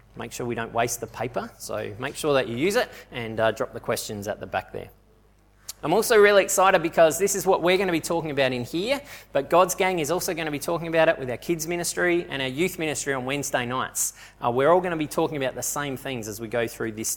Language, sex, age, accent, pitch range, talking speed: English, male, 20-39, Australian, 120-170 Hz, 270 wpm